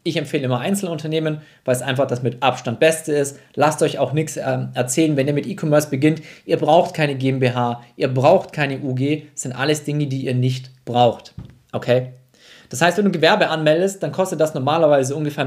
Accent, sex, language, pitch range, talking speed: German, male, German, 125-155 Hz, 200 wpm